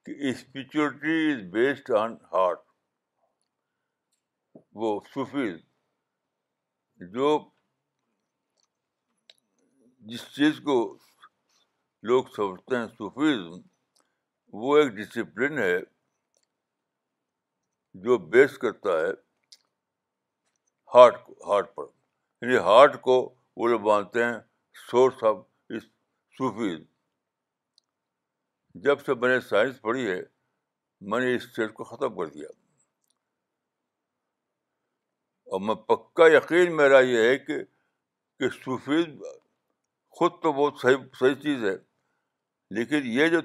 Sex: male